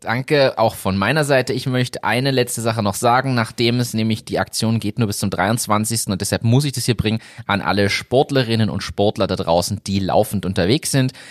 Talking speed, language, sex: 210 wpm, German, male